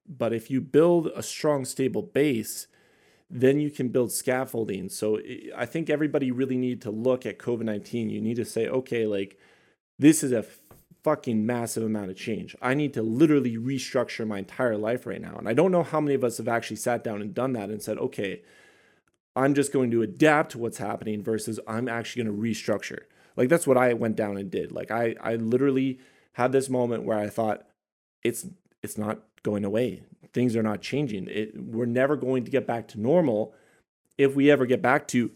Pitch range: 115-145 Hz